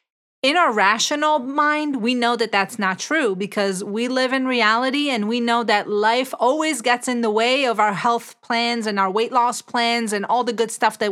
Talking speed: 215 wpm